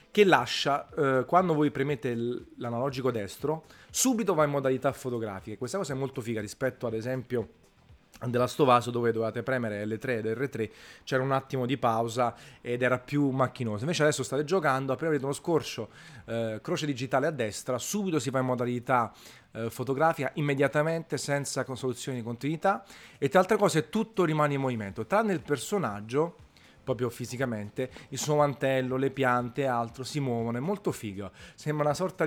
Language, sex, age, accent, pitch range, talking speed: Italian, male, 30-49, native, 120-150 Hz, 170 wpm